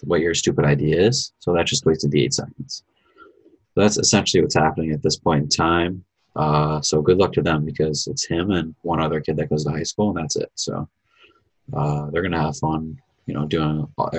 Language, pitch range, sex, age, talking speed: English, 75-90 Hz, male, 20-39, 220 wpm